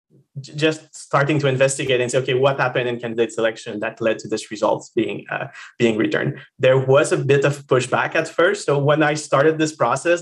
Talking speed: 205 wpm